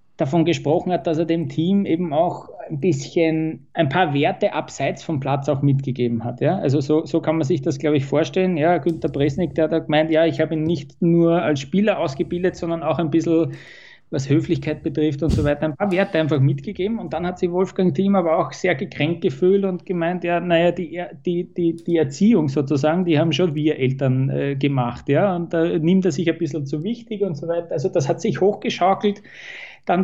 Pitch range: 150-180 Hz